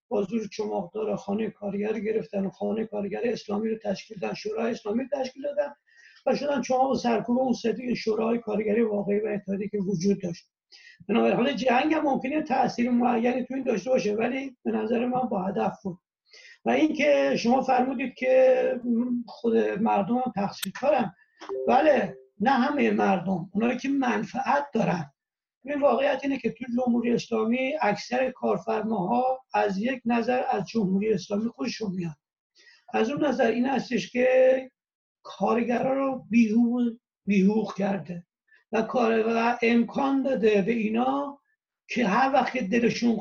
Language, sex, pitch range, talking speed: Persian, male, 210-265 Hz, 145 wpm